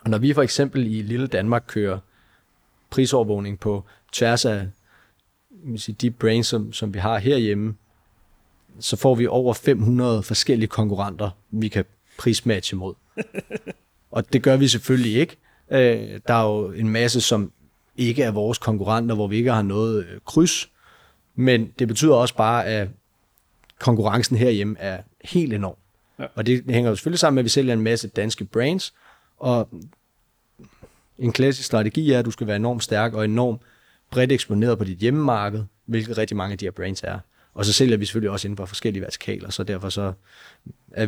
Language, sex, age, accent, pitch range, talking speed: Danish, male, 30-49, native, 100-120 Hz, 170 wpm